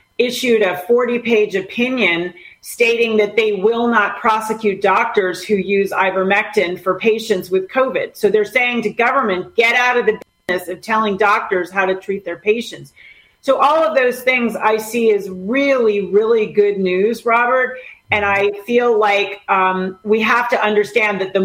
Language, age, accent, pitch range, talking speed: English, 40-59, American, 200-250 Hz, 170 wpm